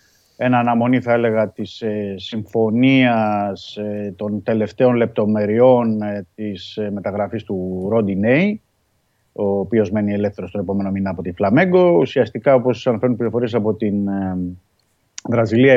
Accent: native